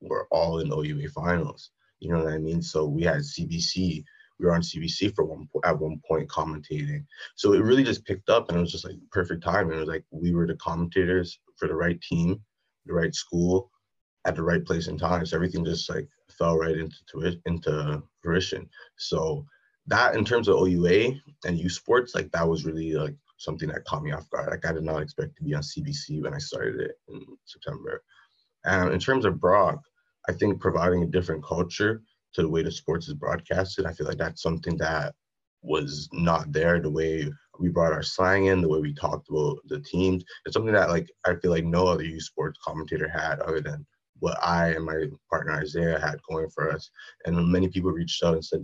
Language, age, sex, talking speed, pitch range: English, 20-39, male, 220 wpm, 80-95 Hz